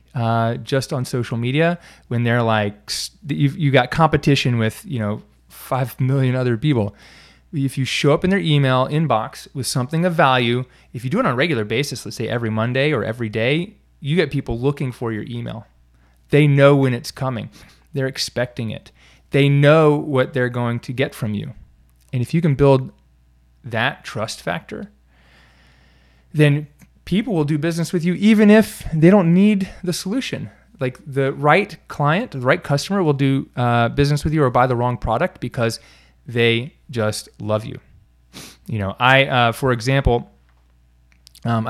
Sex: male